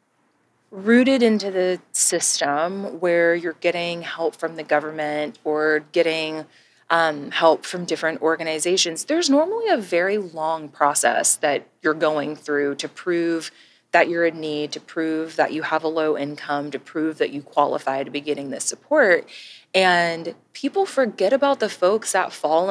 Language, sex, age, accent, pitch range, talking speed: English, female, 20-39, American, 155-200 Hz, 160 wpm